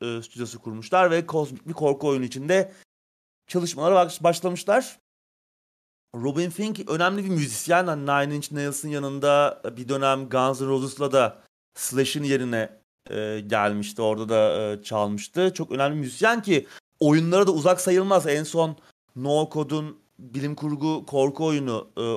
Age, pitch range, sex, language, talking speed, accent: 30-49, 125-175 Hz, male, Turkish, 140 wpm, native